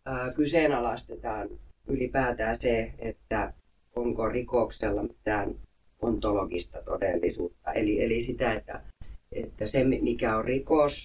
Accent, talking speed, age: native, 100 wpm, 30-49